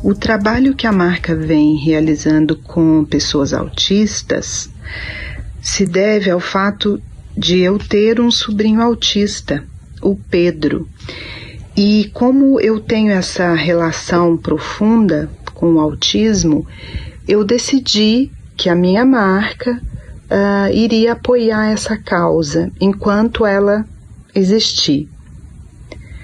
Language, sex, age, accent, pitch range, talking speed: Portuguese, female, 40-59, Brazilian, 165-215 Hz, 105 wpm